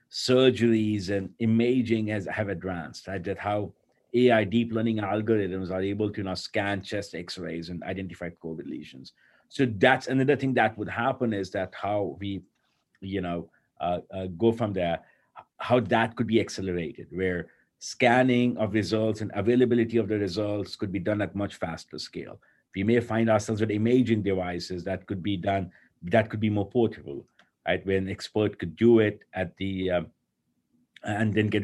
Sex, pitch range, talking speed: male, 95-115 Hz, 175 wpm